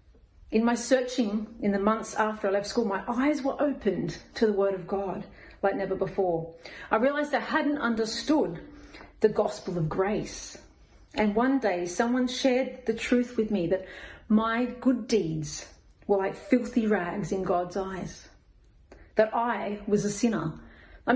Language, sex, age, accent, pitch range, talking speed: English, female, 40-59, Australian, 190-235 Hz, 160 wpm